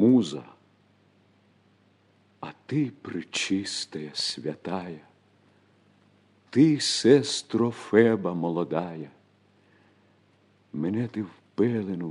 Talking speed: 65 wpm